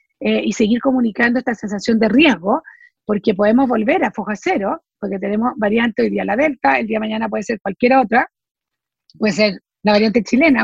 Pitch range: 220-265 Hz